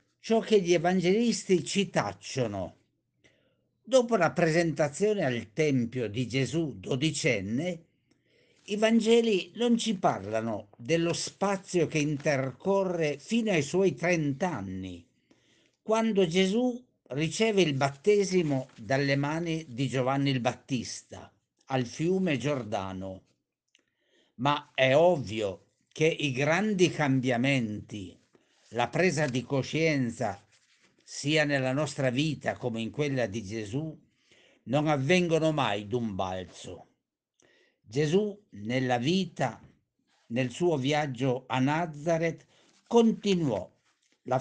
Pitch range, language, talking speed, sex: 125-175 Hz, Italian, 105 wpm, male